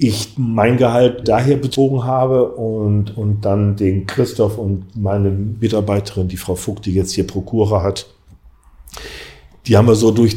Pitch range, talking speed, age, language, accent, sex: 105-125 Hz, 155 wpm, 40-59, German, German, male